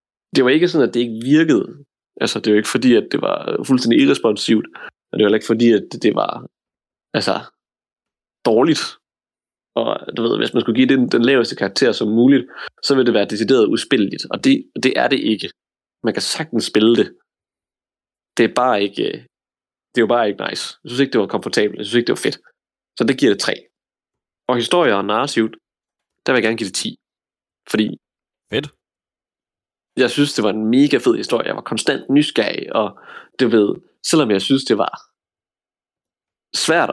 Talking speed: 195 wpm